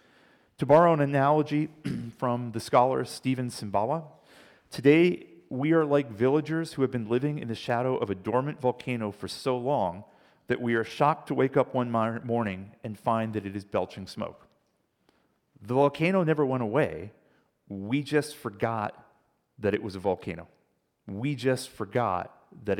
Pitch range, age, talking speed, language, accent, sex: 105-140 Hz, 40-59, 160 wpm, English, American, male